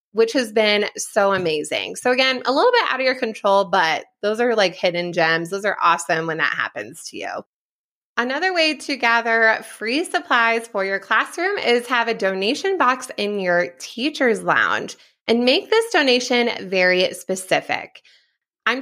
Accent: American